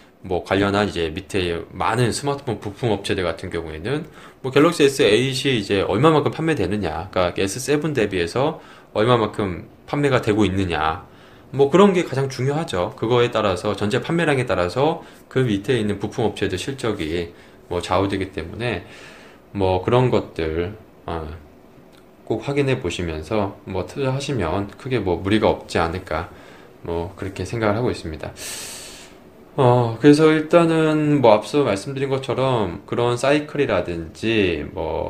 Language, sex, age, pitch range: Korean, male, 20-39, 95-130 Hz